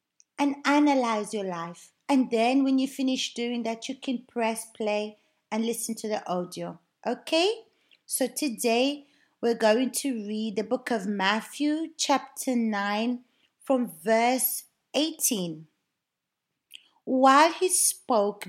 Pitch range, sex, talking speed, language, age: 205-275 Hz, female, 125 wpm, Portuguese, 30-49